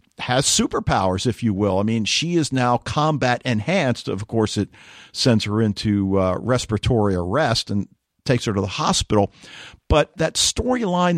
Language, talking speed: English, 160 wpm